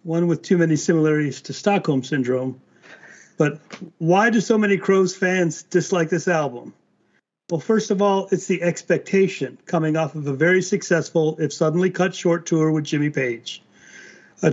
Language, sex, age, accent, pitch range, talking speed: English, male, 40-59, American, 155-190 Hz, 165 wpm